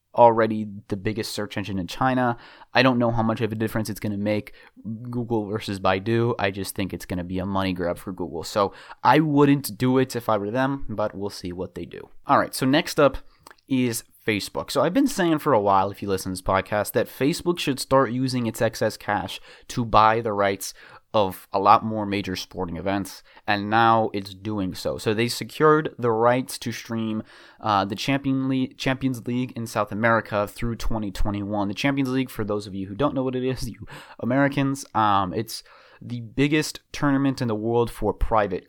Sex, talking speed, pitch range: male, 210 wpm, 100-120 Hz